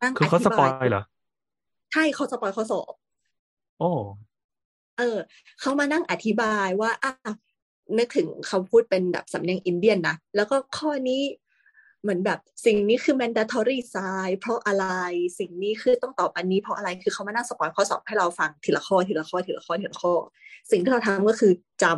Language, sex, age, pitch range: Thai, female, 20-39, 190-255 Hz